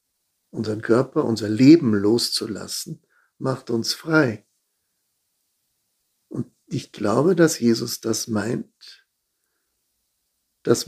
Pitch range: 110-135 Hz